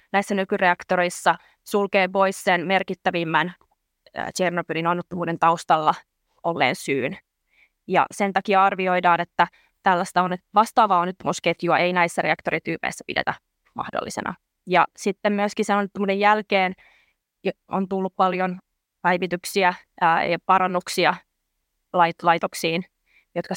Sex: female